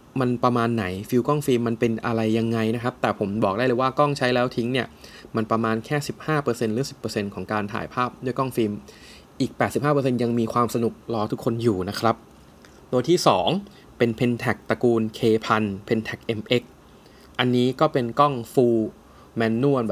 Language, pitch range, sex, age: Thai, 110-130 Hz, male, 20-39